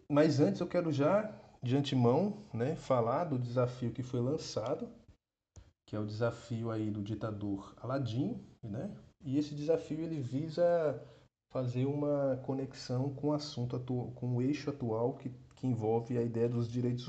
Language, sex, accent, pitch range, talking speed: Portuguese, male, Brazilian, 120-150 Hz, 160 wpm